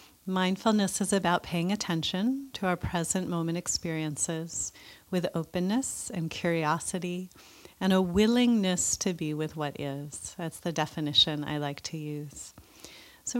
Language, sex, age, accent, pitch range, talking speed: English, female, 30-49, American, 155-195 Hz, 135 wpm